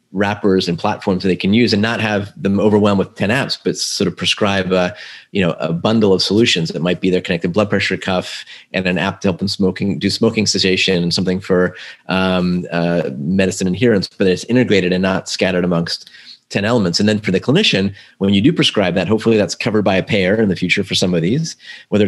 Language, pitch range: English, 90-100 Hz